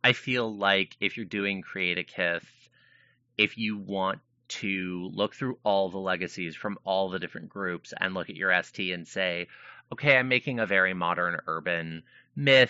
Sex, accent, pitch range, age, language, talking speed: male, American, 95-125 Hz, 30-49, English, 180 wpm